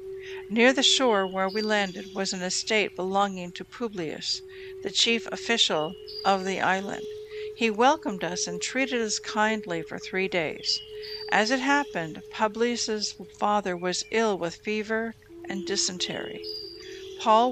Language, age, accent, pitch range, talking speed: English, 60-79, American, 185-250 Hz, 135 wpm